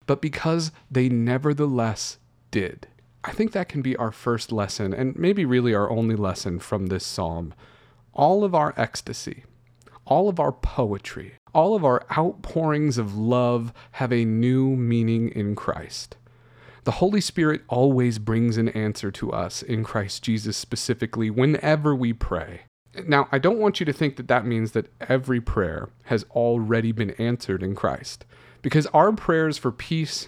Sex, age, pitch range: male, 30-49, 115-150 Hz